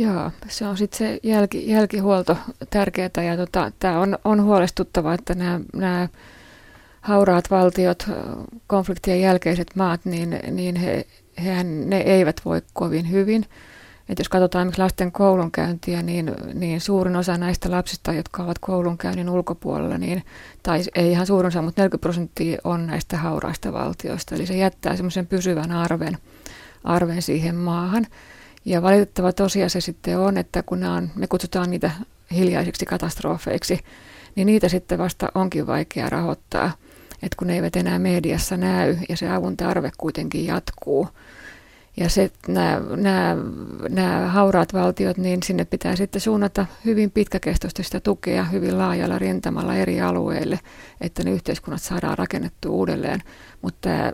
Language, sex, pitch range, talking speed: Finnish, female, 170-195 Hz, 145 wpm